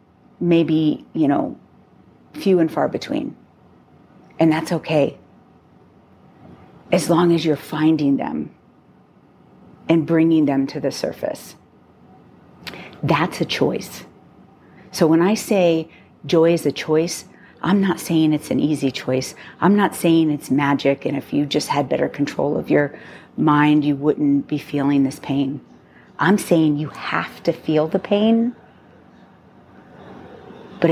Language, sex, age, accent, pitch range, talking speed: English, female, 40-59, American, 145-180 Hz, 135 wpm